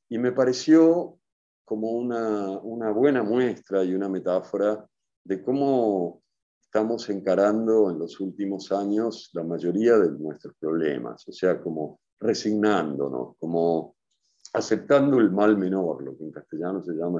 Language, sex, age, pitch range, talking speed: English, male, 50-69, 95-125 Hz, 135 wpm